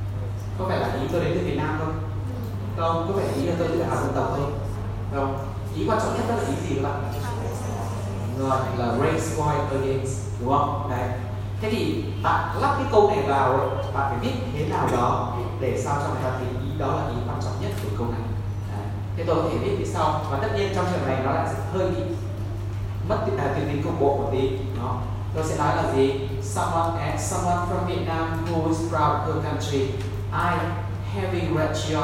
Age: 20-39